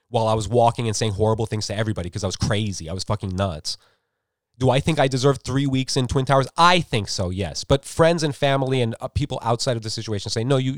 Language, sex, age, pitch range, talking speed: English, male, 30-49, 100-155 Hz, 255 wpm